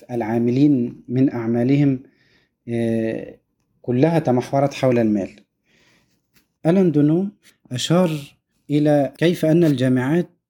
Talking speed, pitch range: 80 wpm, 120-150 Hz